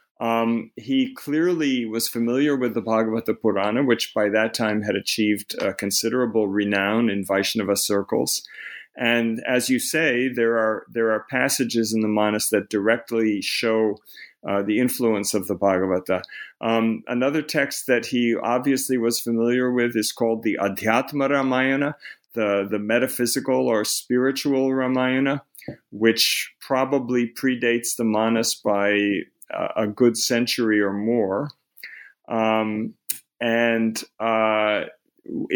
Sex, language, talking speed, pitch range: male, English, 130 wpm, 105-125 Hz